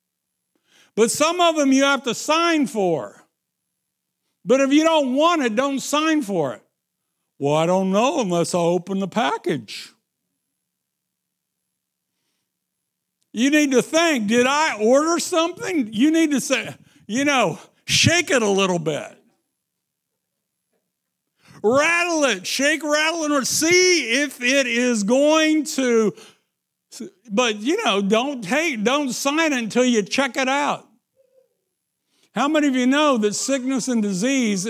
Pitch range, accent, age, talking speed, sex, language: 195-285 Hz, American, 60-79, 140 wpm, male, English